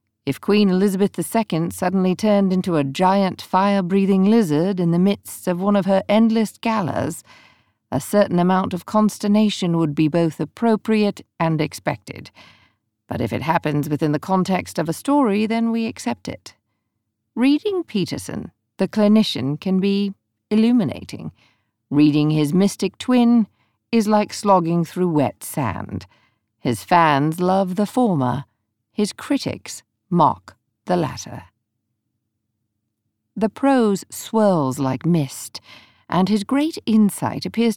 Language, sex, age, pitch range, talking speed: English, female, 50-69, 145-210 Hz, 130 wpm